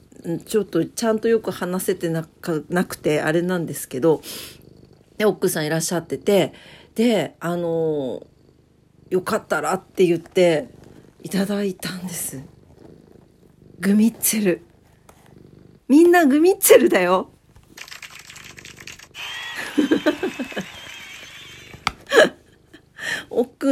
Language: Japanese